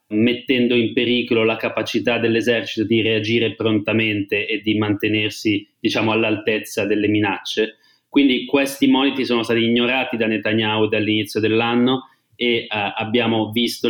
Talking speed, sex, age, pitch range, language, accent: 130 wpm, male, 30-49, 110-125 Hz, Italian, native